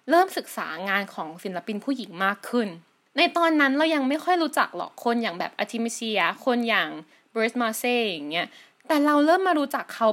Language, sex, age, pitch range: Thai, female, 20-39, 220-290 Hz